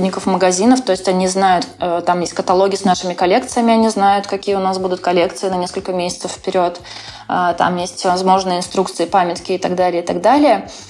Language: Russian